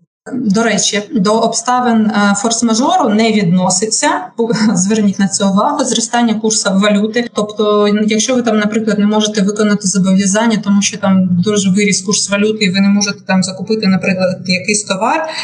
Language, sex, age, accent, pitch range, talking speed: Ukrainian, female, 20-39, native, 190-225 Hz, 150 wpm